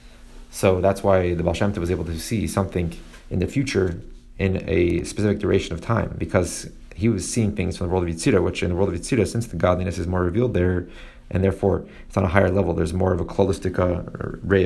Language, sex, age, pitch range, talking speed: English, male, 30-49, 90-100 Hz, 225 wpm